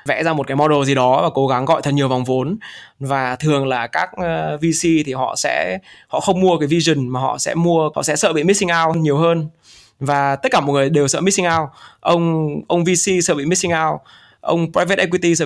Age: 20-39